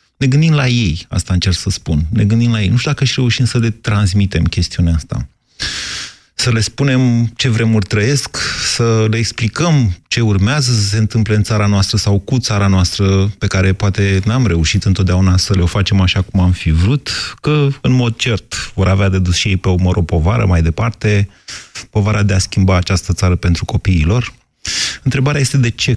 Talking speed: 200 wpm